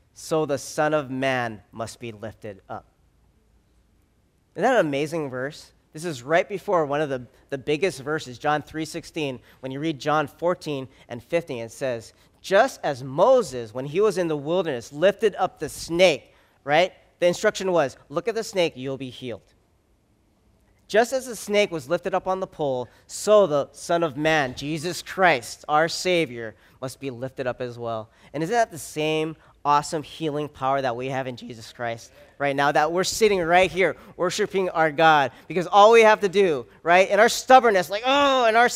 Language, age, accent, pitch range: English, 40-59, American, 130-195 Hz